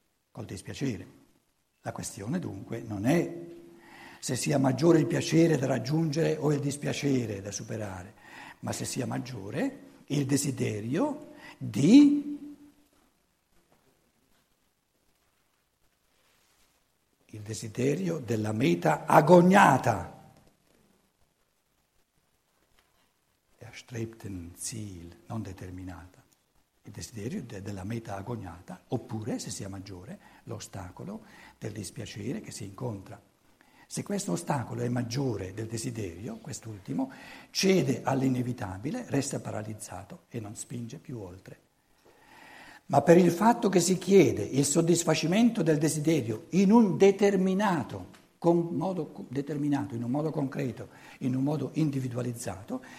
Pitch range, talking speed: 110-165 Hz, 105 wpm